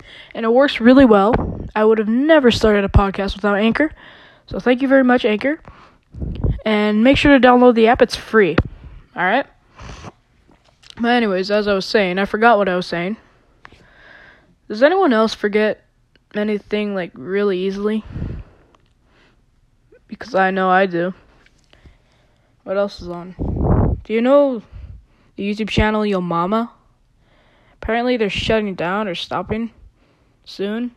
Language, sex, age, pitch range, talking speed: English, female, 10-29, 195-245 Hz, 145 wpm